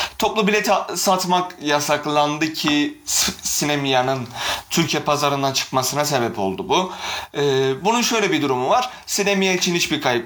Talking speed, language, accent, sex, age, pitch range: 125 wpm, Turkish, native, male, 30-49, 130-175 Hz